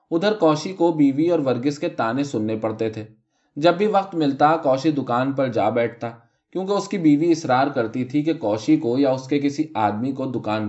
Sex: male